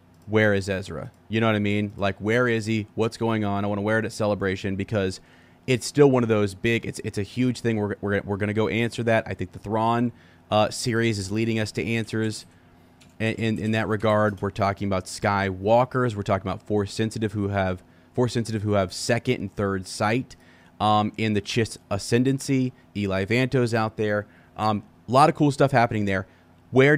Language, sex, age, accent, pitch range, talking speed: English, male, 30-49, American, 95-115 Hz, 205 wpm